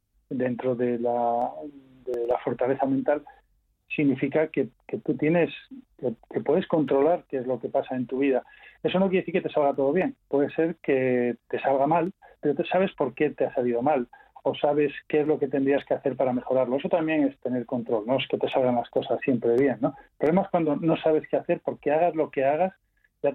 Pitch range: 130-155 Hz